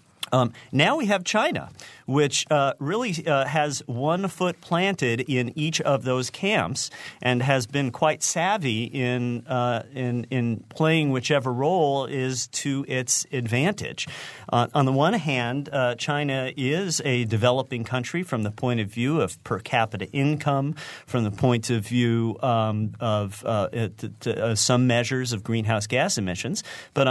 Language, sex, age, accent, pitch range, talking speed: English, male, 40-59, American, 120-145 Hz, 160 wpm